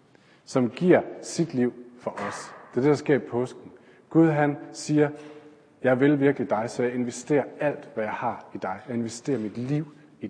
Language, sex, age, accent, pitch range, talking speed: Danish, male, 40-59, native, 115-150 Hz, 200 wpm